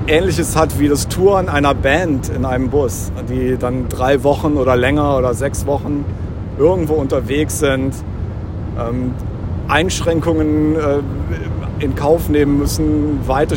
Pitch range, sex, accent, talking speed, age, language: 100-140 Hz, male, German, 125 wpm, 50-69, German